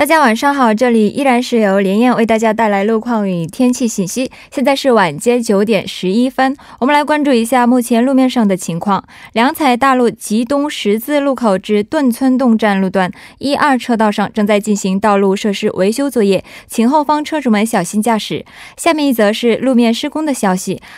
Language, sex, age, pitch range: Korean, female, 20-39, 200-265 Hz